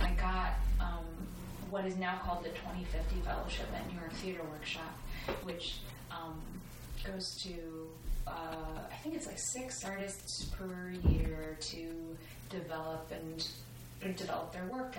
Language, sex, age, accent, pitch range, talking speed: English, female, 30-49, American, 160-190 Hz, 140 wpm